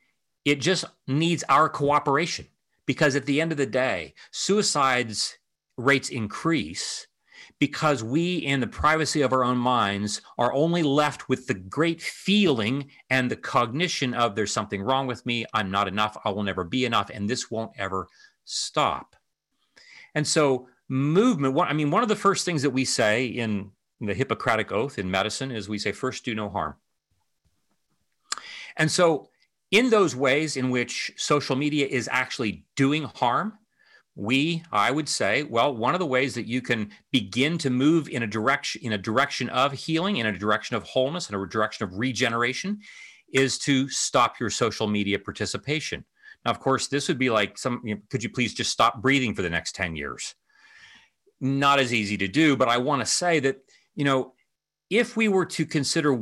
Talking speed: 185 wpm